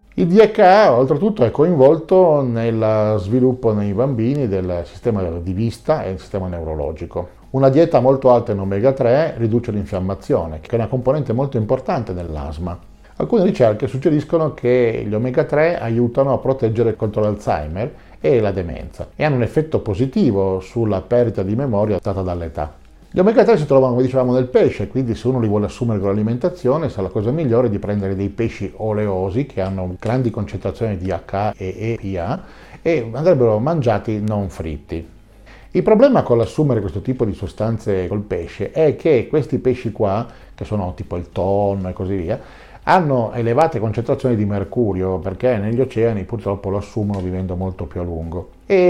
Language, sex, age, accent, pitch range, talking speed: Italian, male, 50-69, native, 95-130 Hz, 170 wpm